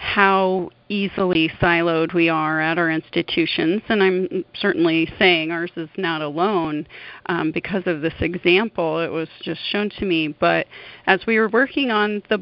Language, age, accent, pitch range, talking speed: English, 30-49, American, 165-195 Hz, 165 wpm